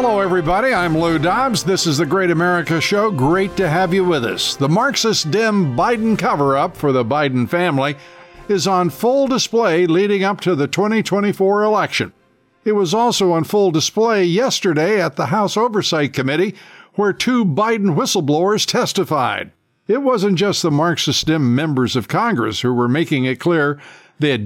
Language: English